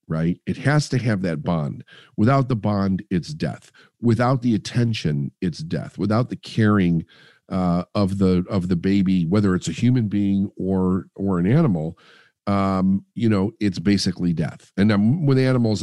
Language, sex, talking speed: English, male, 170 wpm